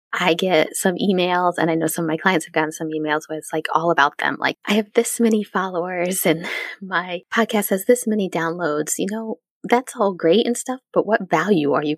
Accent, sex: American, female